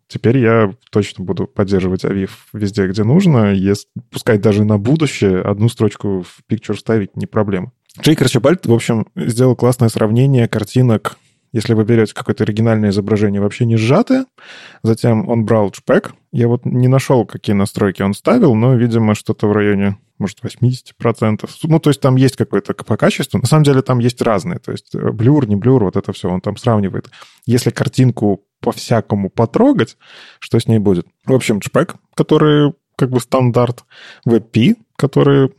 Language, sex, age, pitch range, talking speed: Russian, male, 20-39, 105-130 Hz, 170 wpm